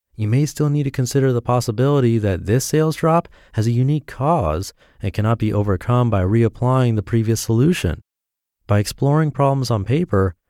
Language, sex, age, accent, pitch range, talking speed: English, male, 30-49, American, 95-125 Hz, 170 wpm